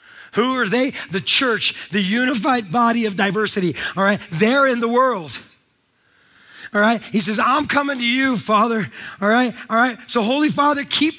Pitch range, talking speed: 230-300 Hz, 175 wpm